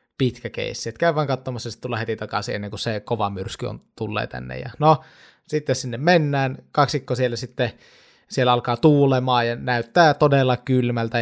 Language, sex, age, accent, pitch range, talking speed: Finnish, male, 20-39, native, 115-145 Hz, 165 wpm